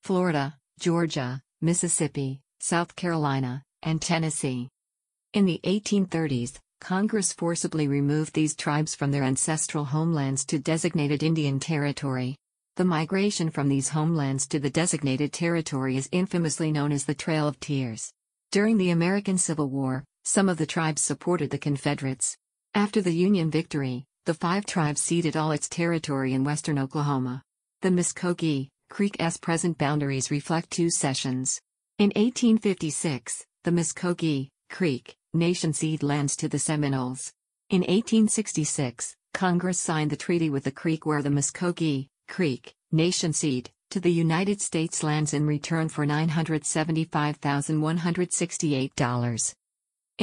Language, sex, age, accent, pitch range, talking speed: English, female, 50-69, American, 145-175 Hz, 130 wpm